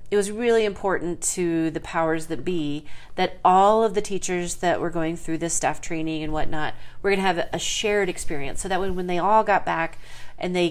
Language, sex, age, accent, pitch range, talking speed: English, female, 40-59, American, 160-195 Hz, 220 wpm